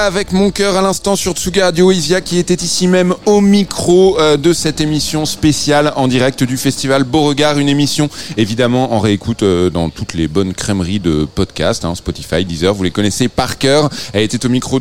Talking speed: 195 wpm